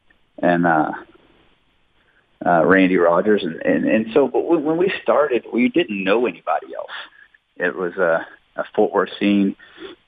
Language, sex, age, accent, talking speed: English, male, 30-49, American, 155 wpm